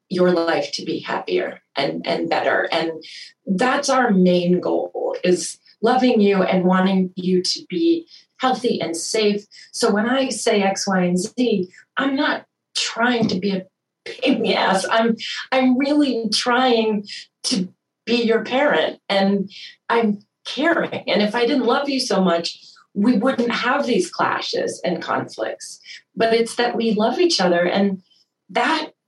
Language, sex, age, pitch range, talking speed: English, female, 30-49, 180-245 Hz, 155 wpm